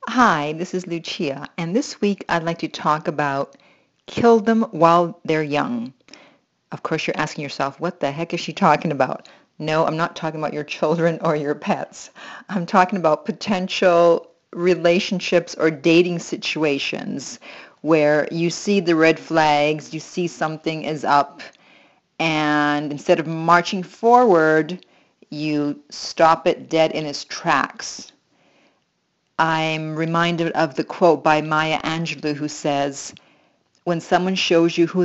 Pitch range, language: 150-175 Hz, English